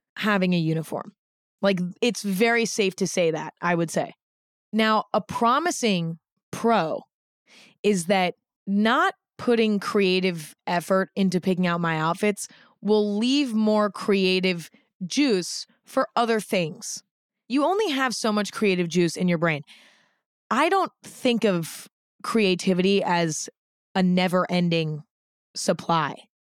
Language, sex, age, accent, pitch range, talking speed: English, female, 20-39, American, 180-230 Hz, 125 wpm